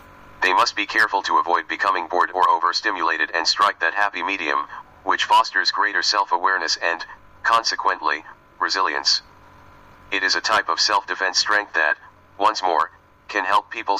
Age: 40-59